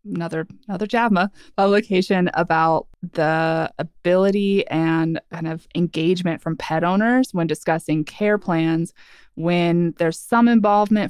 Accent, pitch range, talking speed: American, 165-205 Hz, 120 wpm